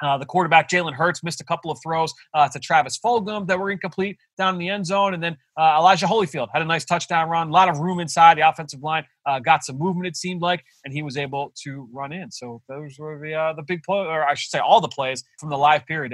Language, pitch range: English, 135-170 Hz